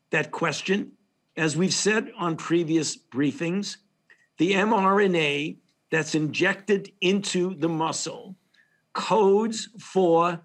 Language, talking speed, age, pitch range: English, 100 wpm, 50-69, 155-190 Hz